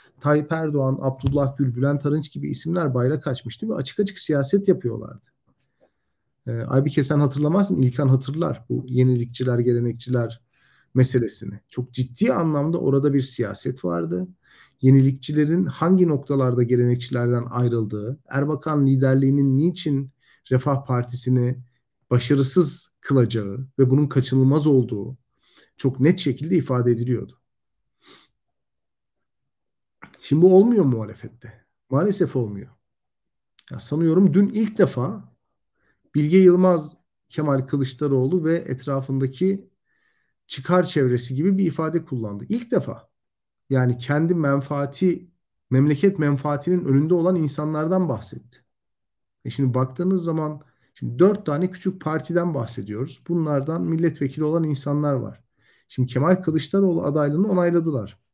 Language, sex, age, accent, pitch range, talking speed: Turkish, male, 40-59, native, 125-165 Hz, 110 wpm